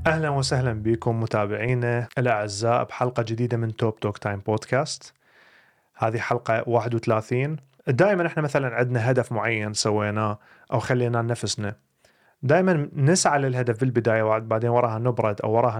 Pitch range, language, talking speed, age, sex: 115-145 Hz, Arabic, 135 wpm, 30-49, male